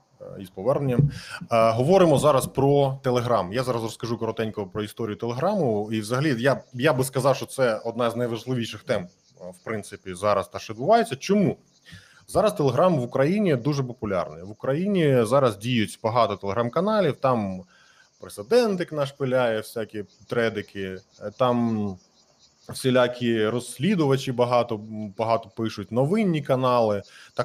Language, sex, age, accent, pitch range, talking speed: Ukrainian, male, 20-39, native, 105-135 Hz, 125 wpm